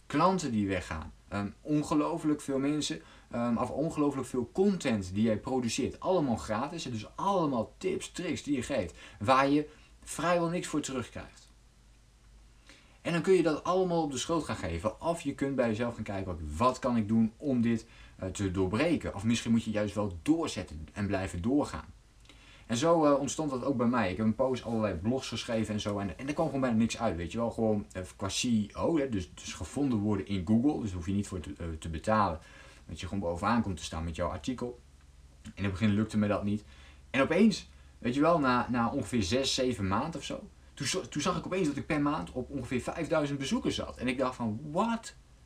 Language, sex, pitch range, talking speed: Dutch, male, 95-140 Hz, 220 wpm